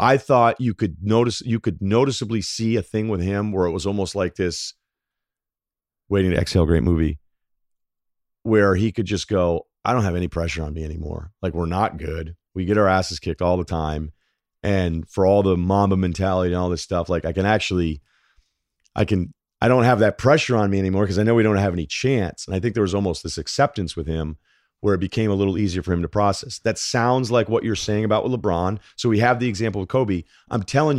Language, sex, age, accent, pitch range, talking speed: English, male, 40-59, American, 90-120 Hz, 230 wpm